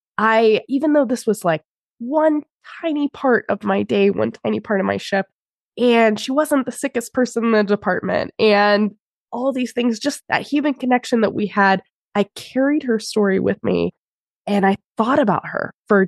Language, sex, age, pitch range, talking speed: English, female, 20-39, 195-270 Hz, 185 wpm